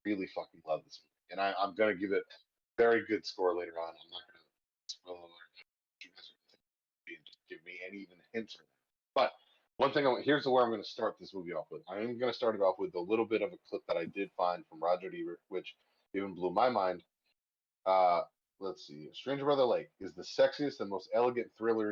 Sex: male